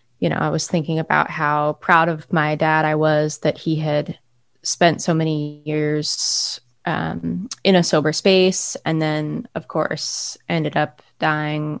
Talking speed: 165 wpm